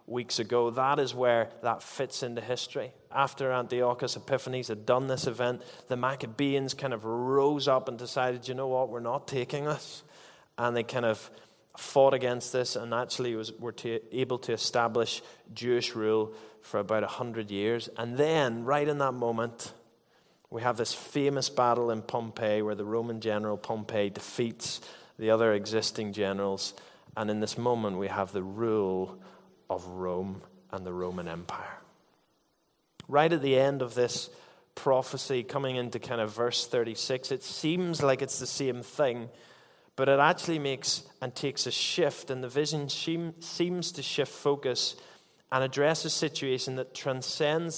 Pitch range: 115-135 Hz